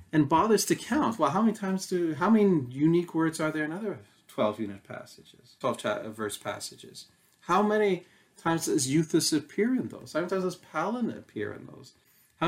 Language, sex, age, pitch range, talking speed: English, male, 40-59, 125-175 Hz, 190 wpm